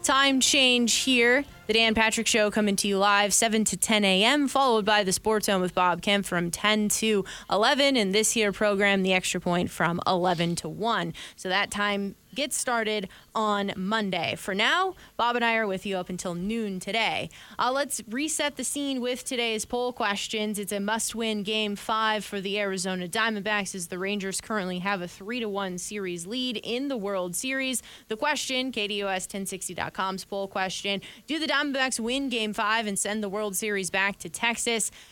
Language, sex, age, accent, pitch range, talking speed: English, female, 20-39, American, 195-235 Hz, 185 wpm